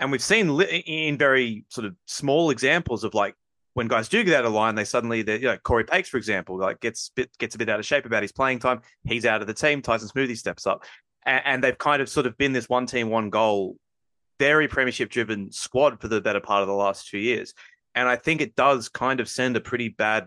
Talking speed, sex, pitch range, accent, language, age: 255 wpm, male, 110-130 Hz, Australian, English, 20-39